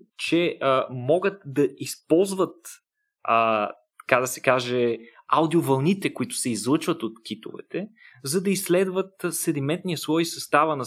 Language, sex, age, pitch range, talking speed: Bulgarian, male, 30-49, 120-165 Hz, 125 wpm